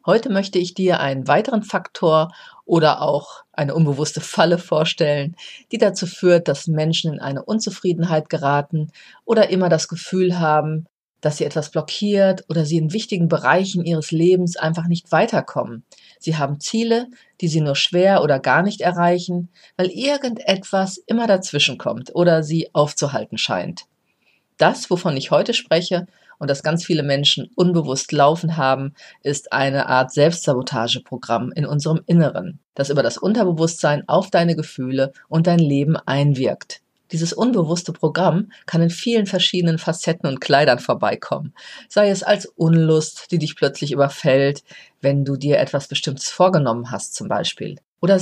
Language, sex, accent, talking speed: German, female, German, 150 wpm